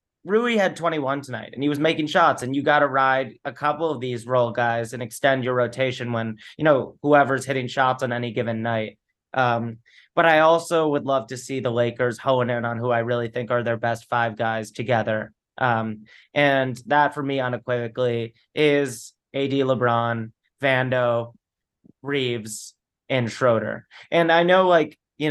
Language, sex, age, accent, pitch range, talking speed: English, male, 30-49, American, 120-150 Hz, 180 wpm